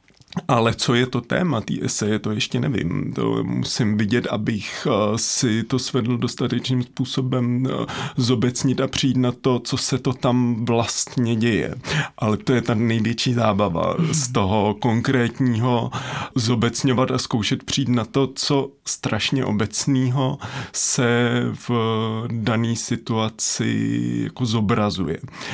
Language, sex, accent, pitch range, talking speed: Czech, male, native, 105-130 Hz, 125 wpm